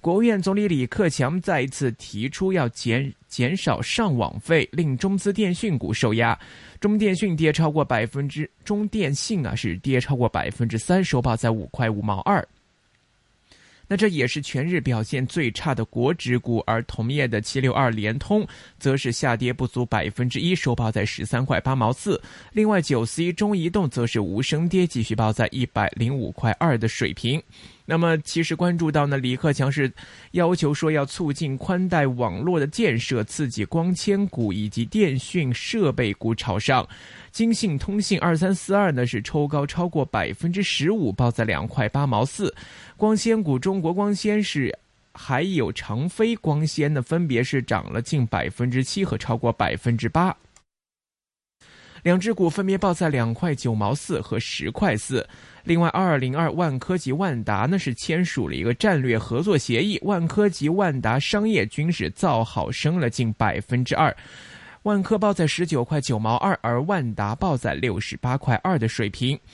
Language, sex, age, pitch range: Chinese, male, 20-39, 120-175 Hz